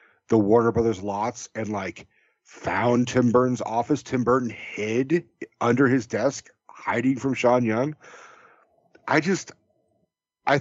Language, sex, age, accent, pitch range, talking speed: English, male, 40-59, American, 115-155 Hz, 130 wpm